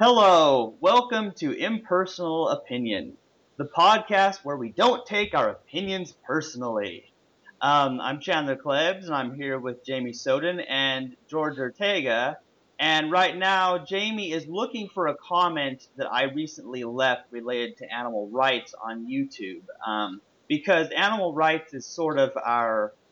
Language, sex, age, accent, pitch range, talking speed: English, male, 30-49, American, 120-170 Hz, 140 wpm